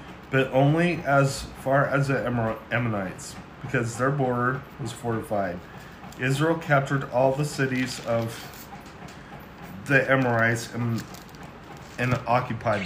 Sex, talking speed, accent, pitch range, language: male, 110 wpm, American, 115-140 Hz, English